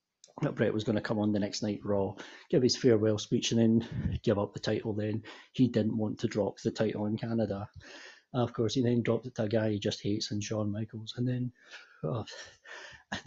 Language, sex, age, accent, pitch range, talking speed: English, male, 40-59, British, 105-125 Hz, 225 wpm